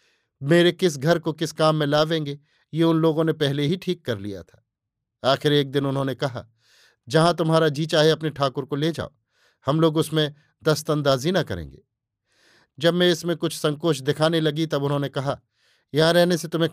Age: 50-69